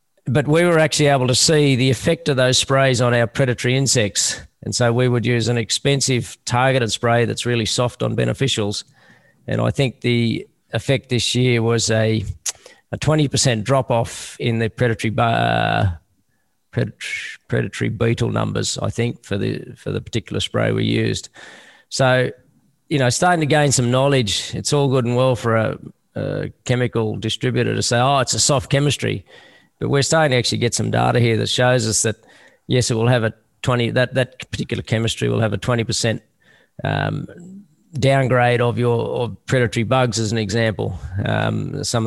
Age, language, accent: 40-59, English, Australian